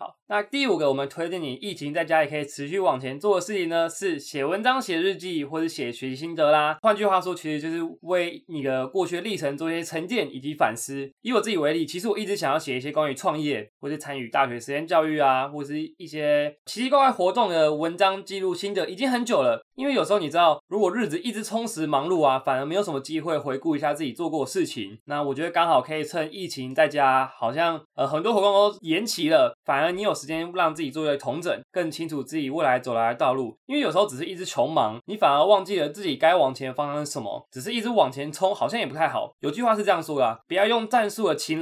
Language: Chinese